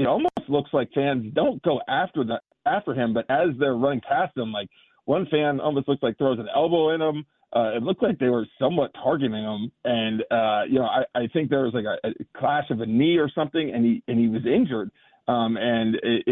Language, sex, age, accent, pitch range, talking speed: English, male, 40-59, American, 120-150 Hz, 235 wpm